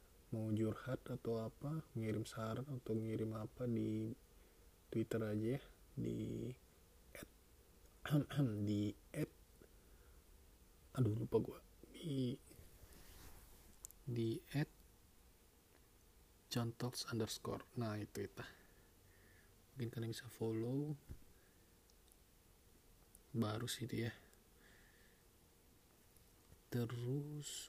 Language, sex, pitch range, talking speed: Indonesian, male, 95-120 Hz, 75 wpm